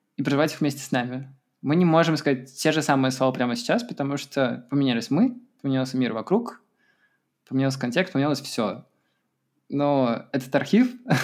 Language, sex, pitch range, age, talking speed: Russian, male, 130-180 Hz, 20-39, 160 wpm